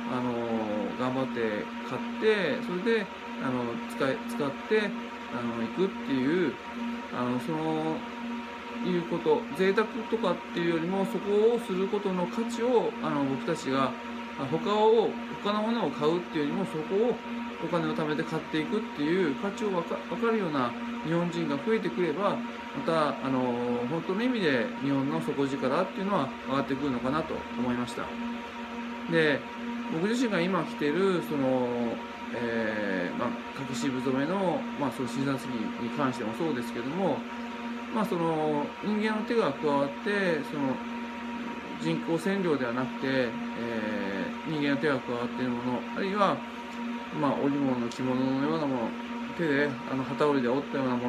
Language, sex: Japanese, male